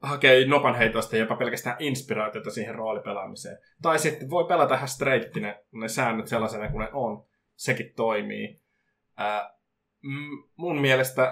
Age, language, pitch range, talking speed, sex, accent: 20-39, Finnish, 110-140 Hz, 145 wpm, male, native